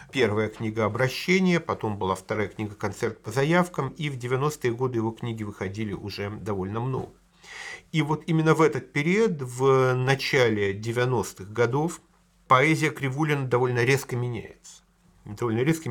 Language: Russian